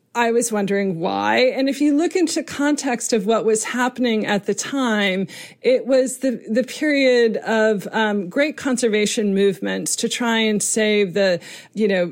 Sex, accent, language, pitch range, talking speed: female, American, English, 205-250 Hz, 170 wpm